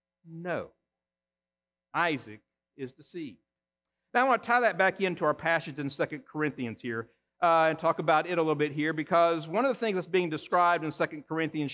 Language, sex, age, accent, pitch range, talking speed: English, male, 50-69, American, 155-200 Hz, 195 wpm